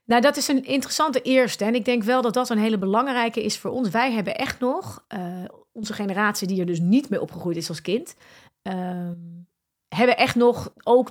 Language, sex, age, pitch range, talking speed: Dutch, female, 30-49, 180-225 Hz, 210 wpm